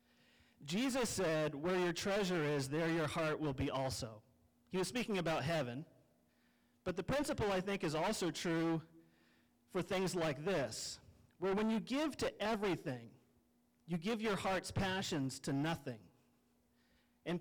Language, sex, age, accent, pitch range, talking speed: English, male, 40-59, American, 140-190 Hz, 150 wpm